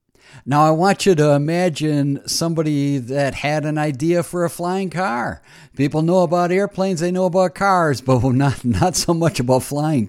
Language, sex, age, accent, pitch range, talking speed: English, male, 60-79, American, 110-150 Hz, 180 wpm